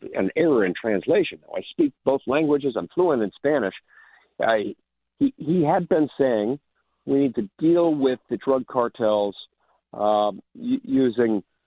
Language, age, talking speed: English, 50-69, 140 wpm